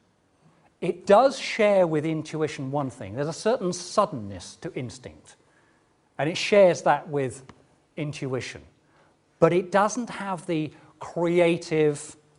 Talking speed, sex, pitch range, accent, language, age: 120 wpm, male, 135-175 Hz, British, English, 40-59